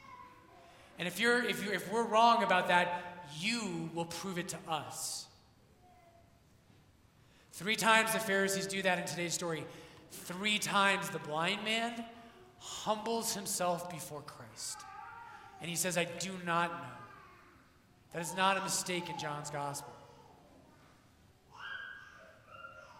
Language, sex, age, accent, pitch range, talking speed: English, male, 30-49, American, 165-200 Hz, 130 wpm